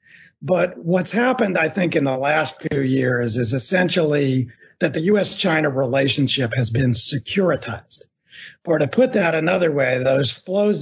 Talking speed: 150 wpm